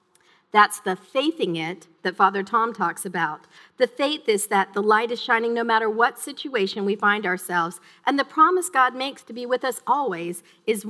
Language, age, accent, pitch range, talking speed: English, 50-69, American, 195-265 Hz, 200 wpm